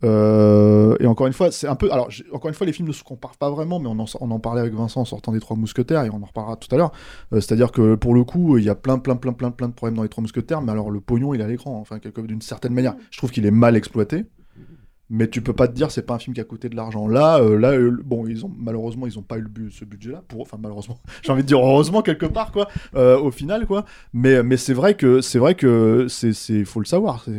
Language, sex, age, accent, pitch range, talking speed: French, male, 20-39, French, 110-135 Hz, 305 wpm